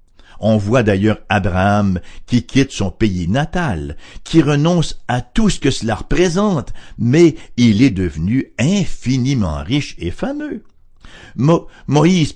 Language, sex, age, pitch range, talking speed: English, male, 60-79, 100-150 Hz, 125 wpm